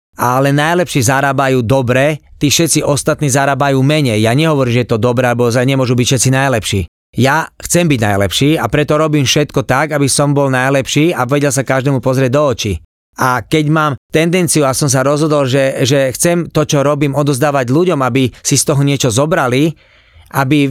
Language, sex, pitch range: Slovak, male, 130-160 Hz